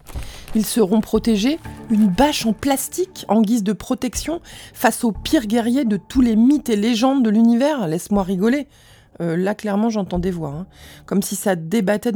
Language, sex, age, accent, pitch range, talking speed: French, female, 20-39, French, 180-225 Hz, 180 wpm